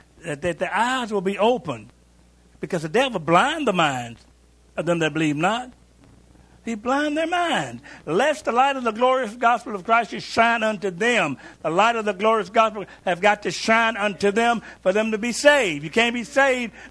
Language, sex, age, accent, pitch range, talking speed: English, male, 60-79, American, 140-225 Hz, 195 wpm